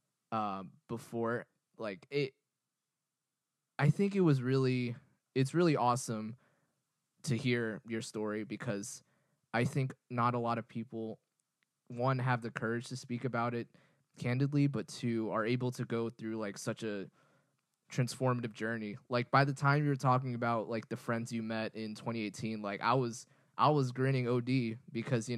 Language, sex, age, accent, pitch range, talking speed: English, male, 20-39, American, 115-135 Hz, 165 wpm